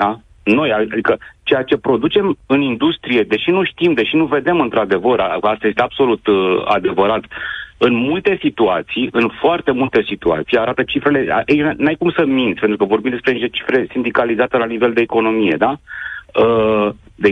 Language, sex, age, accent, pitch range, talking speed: Romanian, male, 40-59, native, 100-145 Hz, 165 wpm